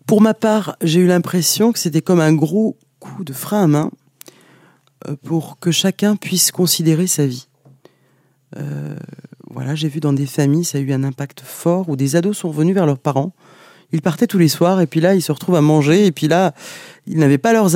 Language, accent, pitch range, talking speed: French, French, 150-180 Hz, 215 wpm